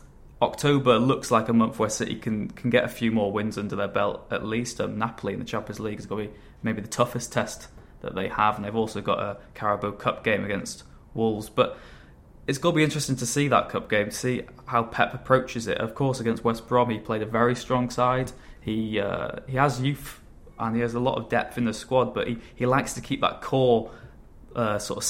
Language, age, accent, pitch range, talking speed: English, 20-39, British, 110-125 Hz, 235 wpm